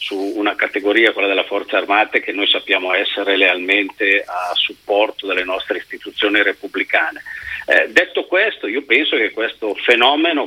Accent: native